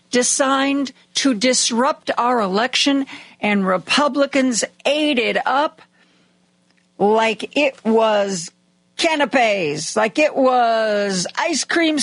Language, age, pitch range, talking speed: English, 50-69, 210-275 Hz, 95 wpm